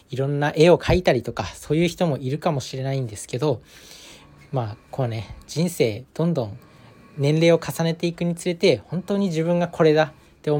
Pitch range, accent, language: 125-165 Hz, native, Japanese